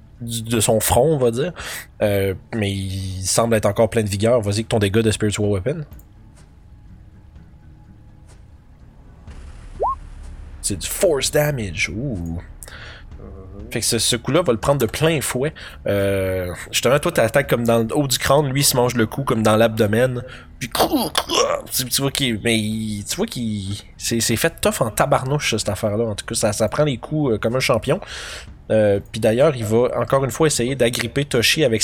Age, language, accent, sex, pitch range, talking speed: 20-39, French, Canadian, male, 100-120 Hz, 185 wpm